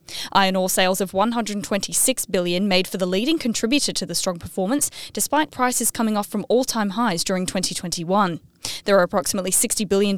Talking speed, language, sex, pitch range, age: 170 wpm, English, female, 185-215 Hz, 10-29